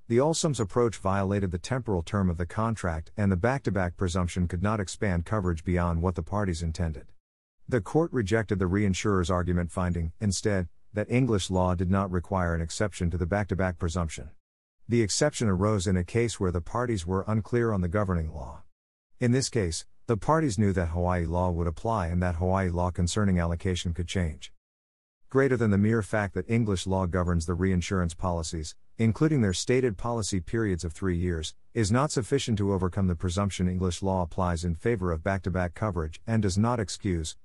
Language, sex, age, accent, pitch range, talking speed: English, male, 50-69, American, 90-110 Hz, 185 wpm